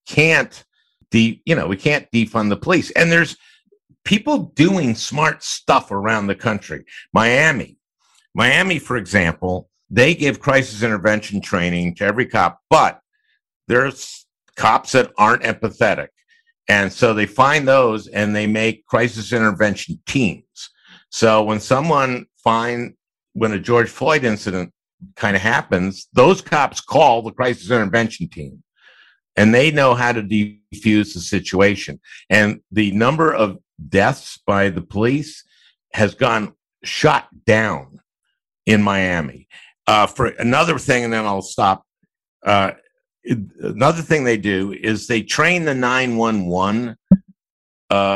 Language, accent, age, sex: English, American, 50-69, male